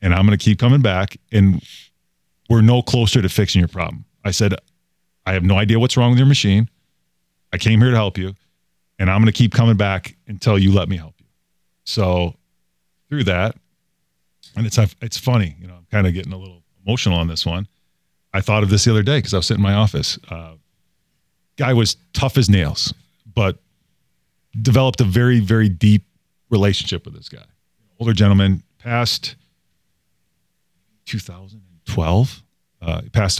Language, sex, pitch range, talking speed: English, male, 90-110 Hz, 180 wpm